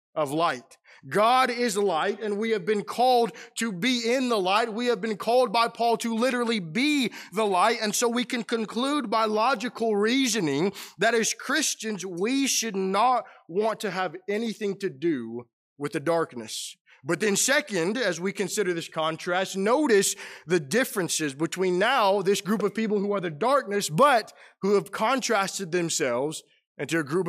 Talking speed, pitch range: 175 wpm, 195-245 Hz